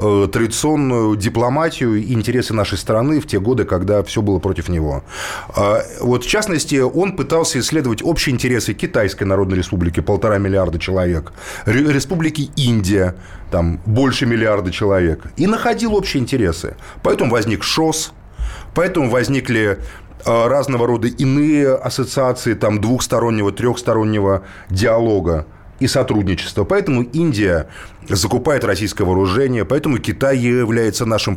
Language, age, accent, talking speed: Russian, 30-49, native, 120 wpm